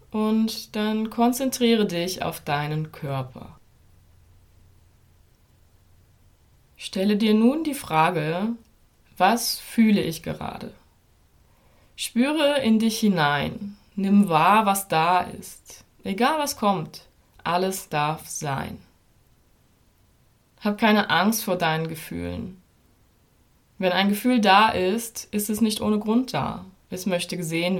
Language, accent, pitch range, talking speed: German, German, 160-215 Hz, 110 wpm